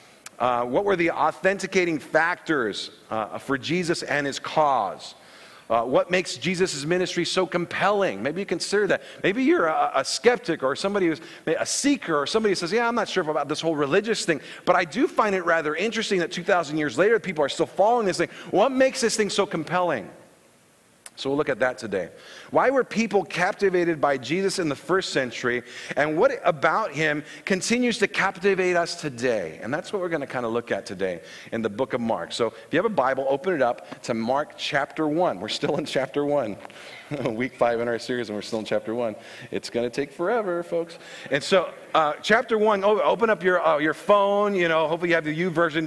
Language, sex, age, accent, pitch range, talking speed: English, male, 40-59, American, 150-195 Hz, 215 wpm